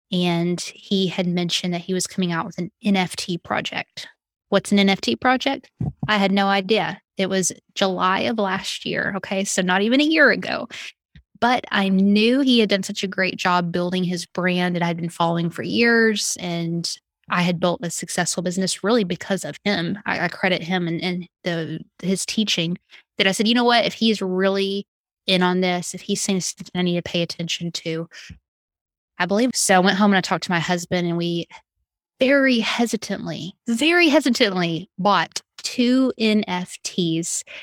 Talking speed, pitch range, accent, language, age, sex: 185 wpm, 175-205 Hz, American, English, 20-39, female